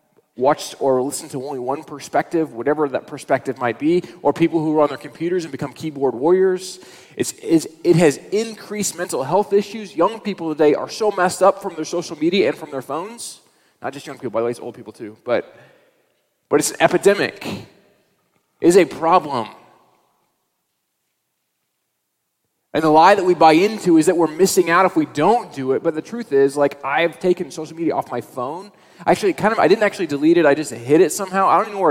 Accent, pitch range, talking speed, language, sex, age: American, 155-205 Hz, 215 wpm, English, male, 20-39